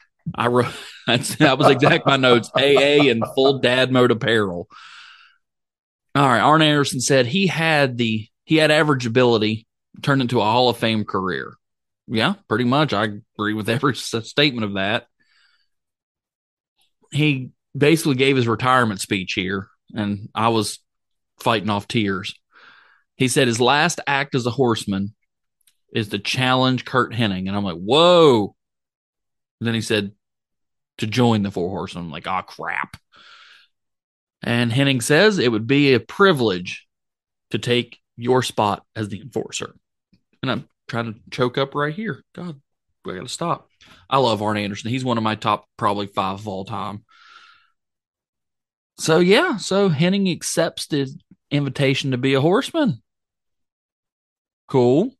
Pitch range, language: 110-140 Hz, English